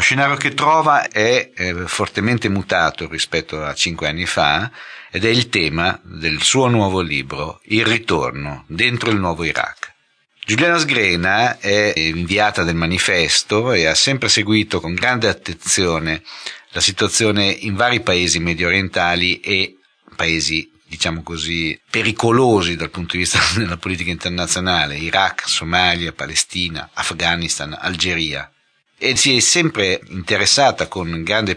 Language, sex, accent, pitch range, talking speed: Italian, male, native, 85-110 Hz, 135 wpm